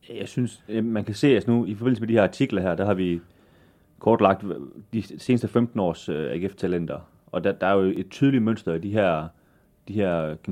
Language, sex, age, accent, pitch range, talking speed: Danish, male, 30-49, native, 90-105 Hz, 205 wpm